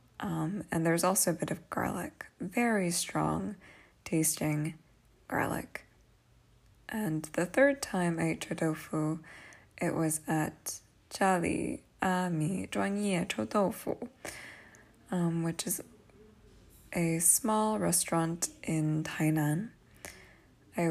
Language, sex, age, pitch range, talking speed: English, female, 20-39, 155-185 Hz, 100 wpm